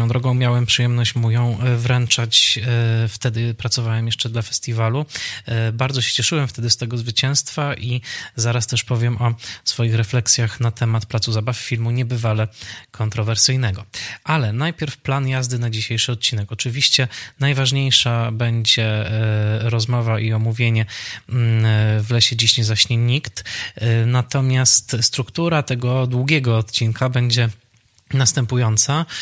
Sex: male